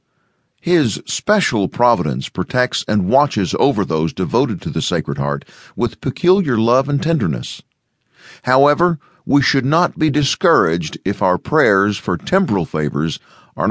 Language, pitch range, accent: English, 100-150 Hz, American